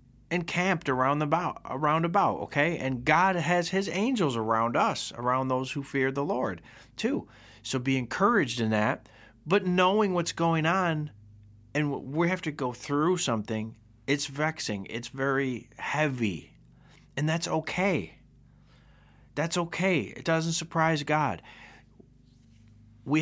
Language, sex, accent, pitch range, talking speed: English, male, American, 115-155 Hz, 135 wpm